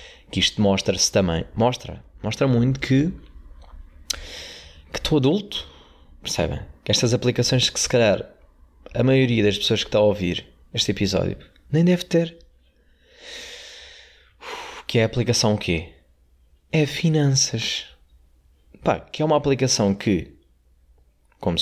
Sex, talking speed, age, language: male, 130 wpm, 20-39, Portuguese